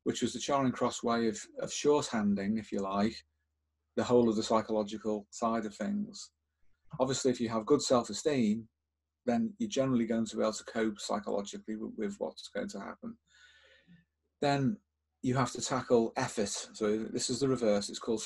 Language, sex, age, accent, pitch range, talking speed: English, male, 40-59, British, 105-130 Hz, 180 wpm